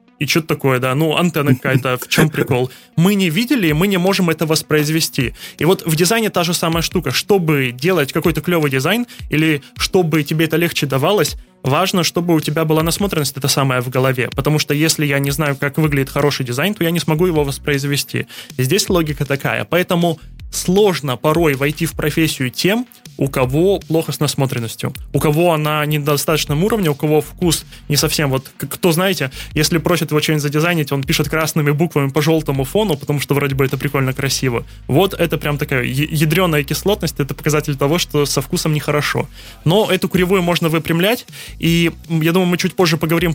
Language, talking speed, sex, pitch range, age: Russian, 185 wpm, male, 145-170 Hz, 20-39